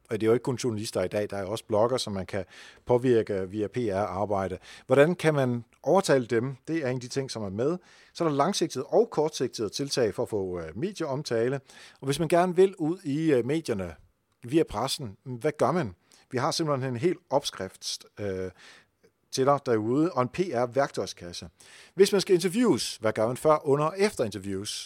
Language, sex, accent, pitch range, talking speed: Danish, male, native, 105-150 Hz, 195 wpm